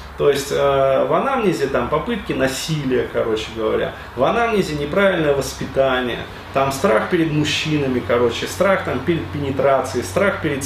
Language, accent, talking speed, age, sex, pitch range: Russian, native, 140 wpm, 30-49, male, 135-180 Hz